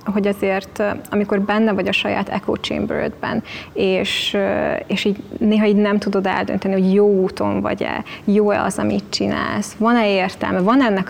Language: Hungarian